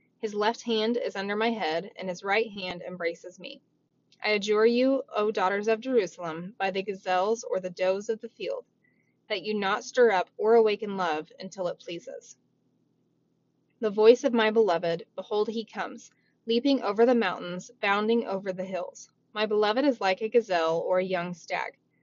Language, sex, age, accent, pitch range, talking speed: English, female, 20-39, American, 185-230 Hz, 180 wpm